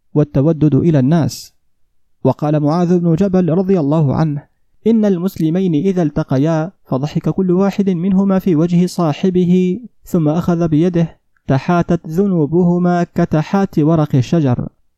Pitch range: 145-180 Hz